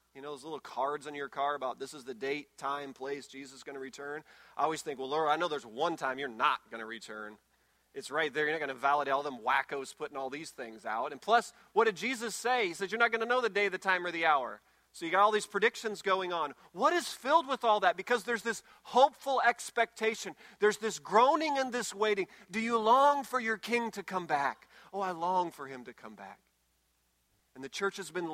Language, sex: English, male